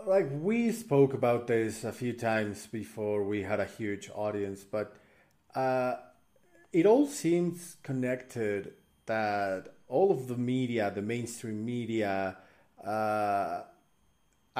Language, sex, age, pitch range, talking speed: English, male, 30-49, 100-120 Hz, 120 wpm